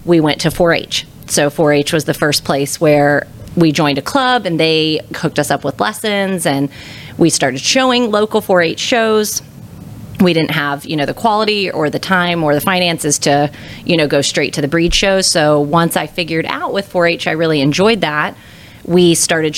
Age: 30-49